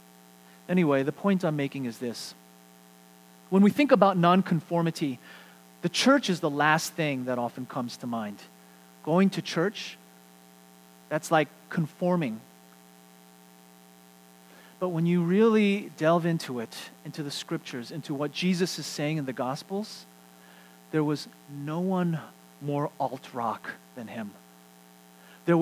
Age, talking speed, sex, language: 30-49, 130 wpm, male, English